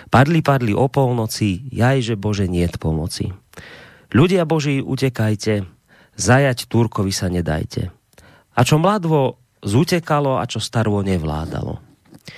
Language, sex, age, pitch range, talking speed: Slovak, male, 30-49, 100-130 Hz, 110 wpm